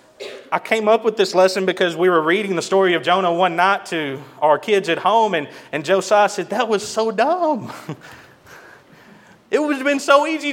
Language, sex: English, male